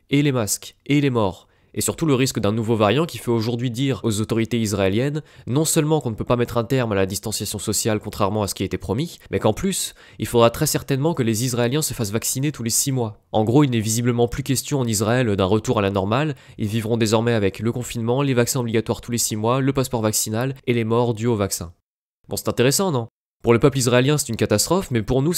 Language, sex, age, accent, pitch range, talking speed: English, male, 20-39, French, 110-135 Hz, 255 wpm